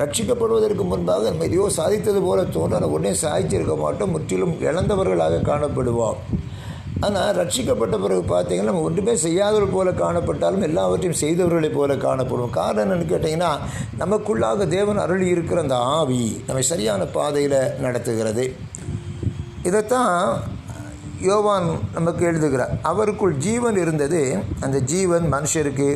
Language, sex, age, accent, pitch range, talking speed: Tamil, male, 60-79, native, 125-180 Hz, 115 wpm